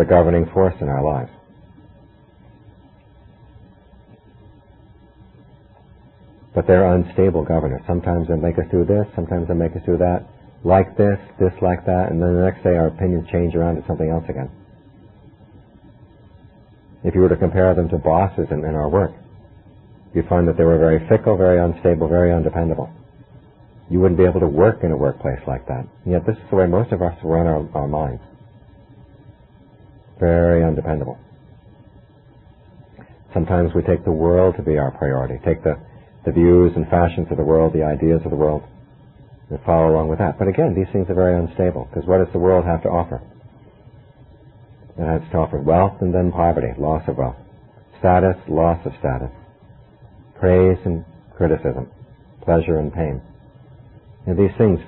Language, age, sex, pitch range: Thai, 50-69, male, 80-95 Hz